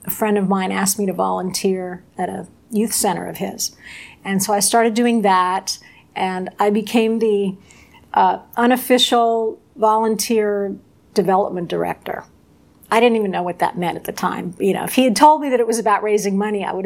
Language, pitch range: English, 195-240 Hz